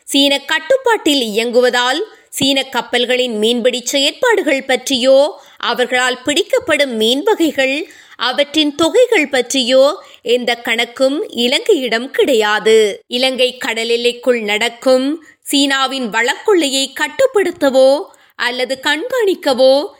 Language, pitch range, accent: Tamil, 245-310 Hz, native